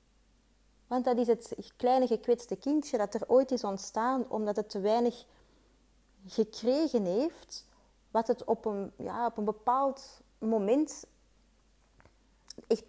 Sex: female